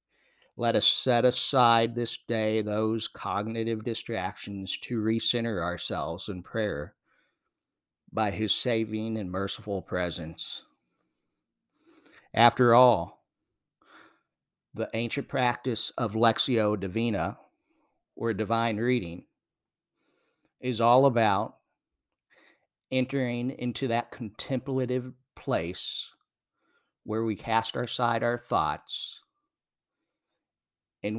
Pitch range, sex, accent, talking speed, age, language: 100-125 Hz, male, American, 90 wpm, 50-69, English